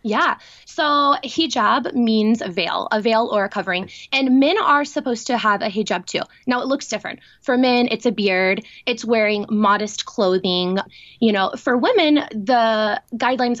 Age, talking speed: 20-39, 170 wpm